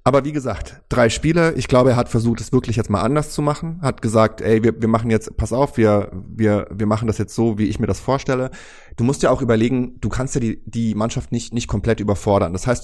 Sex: male